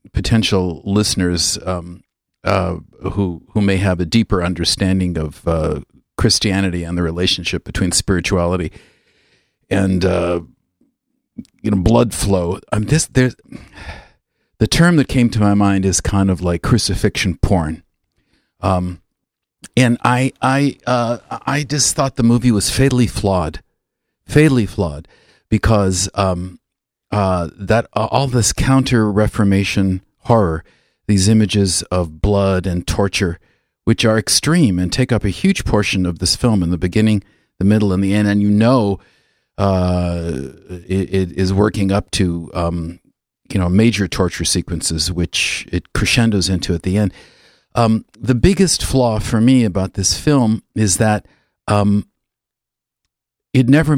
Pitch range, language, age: 90-110 Hz, English, 50-69